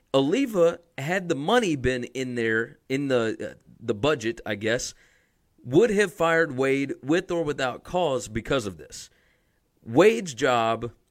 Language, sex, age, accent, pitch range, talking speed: English, male, 30-49, American, 115-160 Hz, 145 wpm